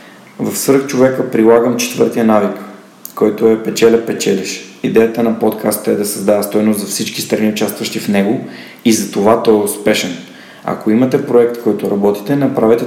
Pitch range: 105-120 Hz